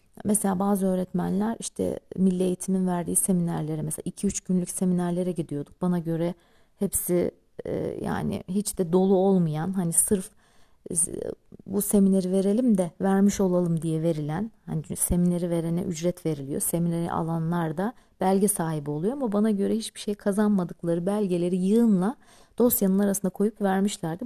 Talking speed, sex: 130 wpm, female